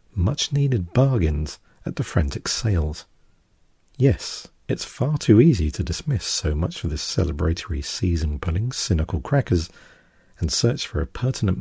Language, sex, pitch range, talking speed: English, male, 80-115 Hz, 140 wpm